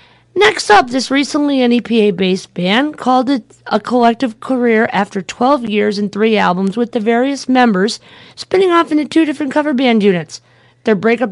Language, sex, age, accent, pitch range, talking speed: English, female, 40-59, American, 190-245 Hz, 165 wpm